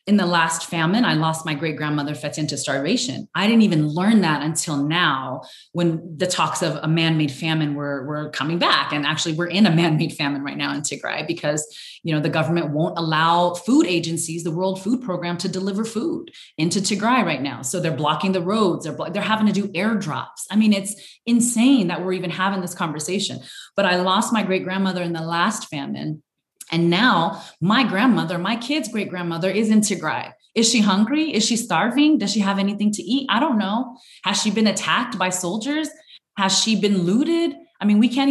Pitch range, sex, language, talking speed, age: 165-215 Hz, female, English, 205 wpm, 20-39